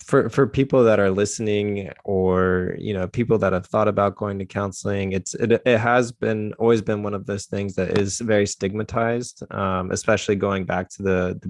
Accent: American